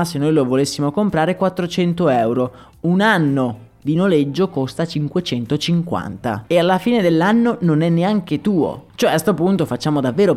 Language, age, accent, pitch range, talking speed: Italian, 30-49, native, 140-215 Hz, 155 wpm